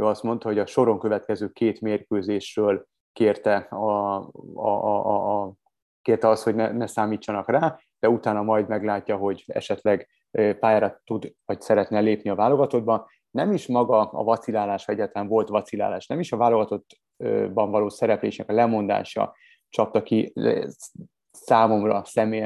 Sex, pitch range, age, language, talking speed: male, 105-115 Hz, 30-49, Hungarian, 145 wpm